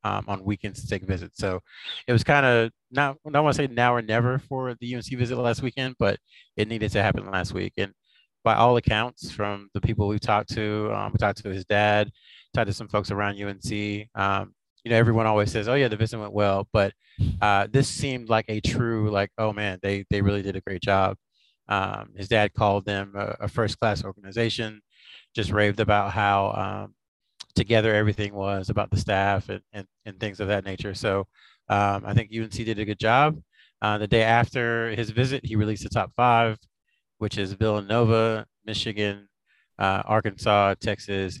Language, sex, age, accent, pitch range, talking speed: English, male, 30-49, American, 100-115 Hz, 200 wpm